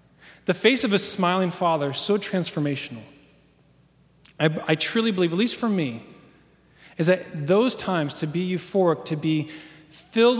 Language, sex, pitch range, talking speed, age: English, male, 145-190 Hz, 155 wpm, 30-49